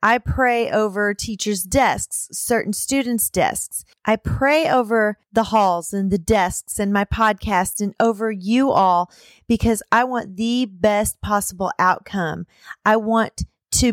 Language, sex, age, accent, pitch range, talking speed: English, female, 30-49, American, 200-235 Hz, 140 wpm